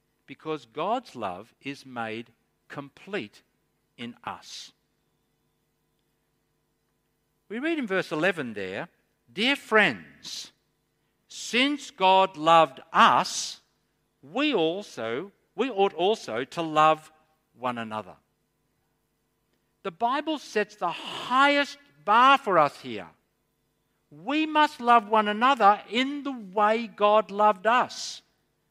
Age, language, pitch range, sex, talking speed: 60-79, English, 155-225 Hz, male, 100 wpm